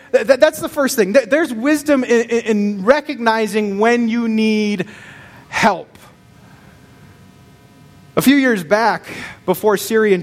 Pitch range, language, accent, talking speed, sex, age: 150-240 Hz, English, American, 110 wpm, male, 30-49